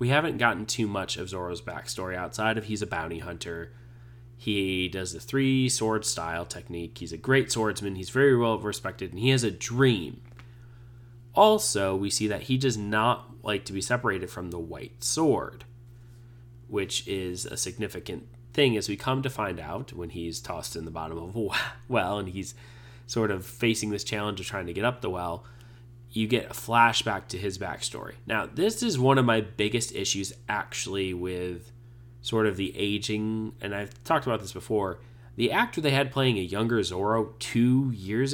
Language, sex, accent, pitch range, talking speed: English, male, American, 100-125 Hz, 185 wpm